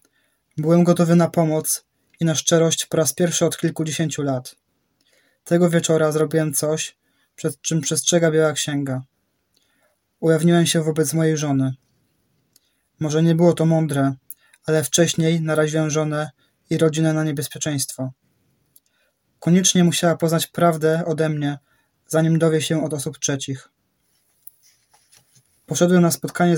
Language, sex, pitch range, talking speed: English, male, 150-170 Hz, 125 wpm